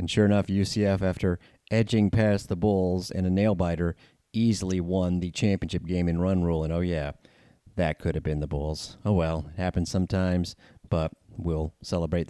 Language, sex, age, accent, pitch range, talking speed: English, male, 30-49, American, 85-100 Hz, 180 wpm